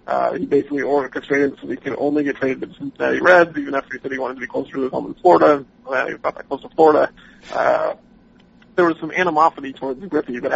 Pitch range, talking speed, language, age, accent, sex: 140-160 Hz, 250 wpm, English, 40-59, American, male